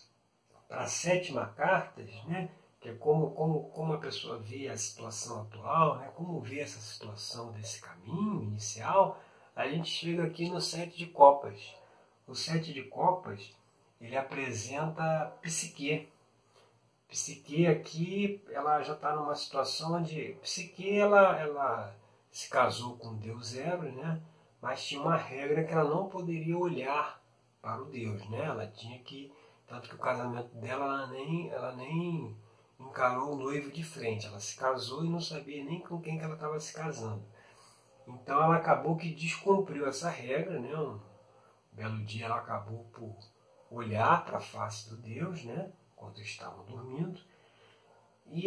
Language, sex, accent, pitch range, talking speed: Portuguese, male, Brazilian, 115-165 Hz, 155 wpm